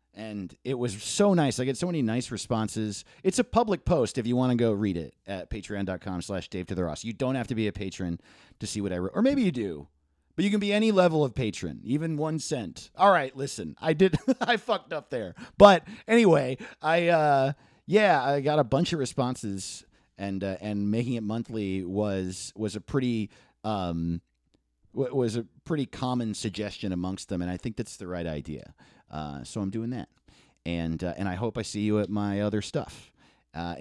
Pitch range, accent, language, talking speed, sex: 100-145 Hz, American, English, 210 wpm, male